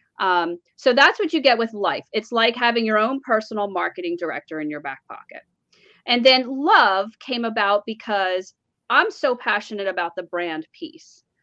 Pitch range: 200-275 Hz